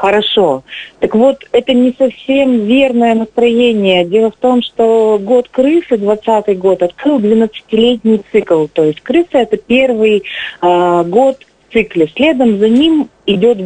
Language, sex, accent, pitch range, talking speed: Russian, female, native, 190-240 Hz, 140 wpm